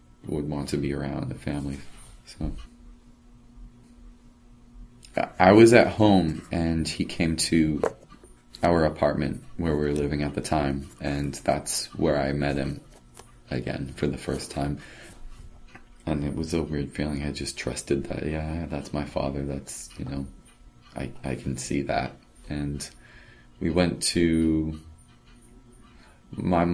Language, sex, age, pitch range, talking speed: English, male, 30-49, 70-85 Hz, 140 wpm